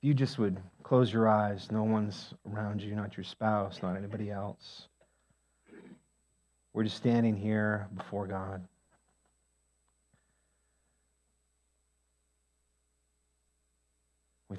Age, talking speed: 40-59, 95 wpm